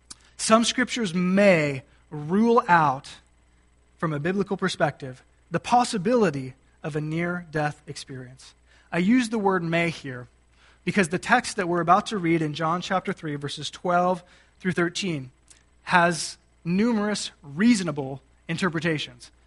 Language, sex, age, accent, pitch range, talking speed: English, male, 20-39, American, 150-200 Hz, 125 wpm